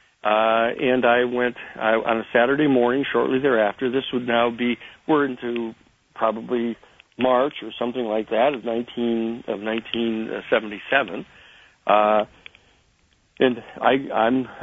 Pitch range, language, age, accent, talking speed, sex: 115-130 Hz, English, 60-79, American, 110 wpm, male